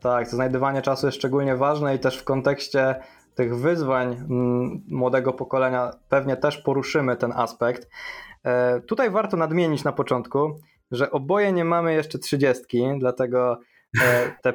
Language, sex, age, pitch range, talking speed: Polish, male, 20-39, 130-155 Hz, 135 wpm